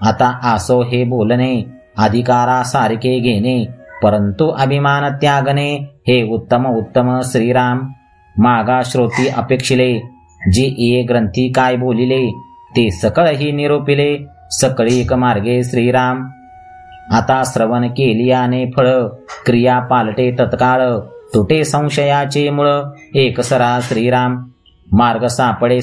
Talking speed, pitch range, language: 100 wpm, 120-135 Hz, Marathi